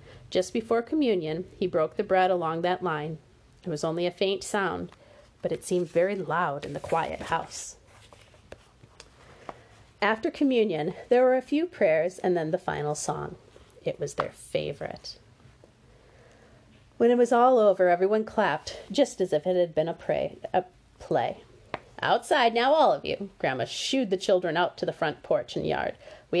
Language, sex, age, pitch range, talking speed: English, female, 40-59, 150-215 Hz, 170 wpm